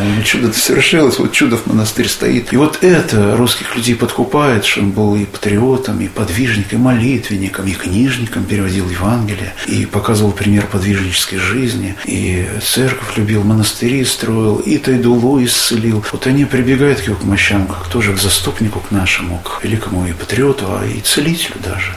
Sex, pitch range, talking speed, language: male, 100-120 Hz, 160 wpm, Russian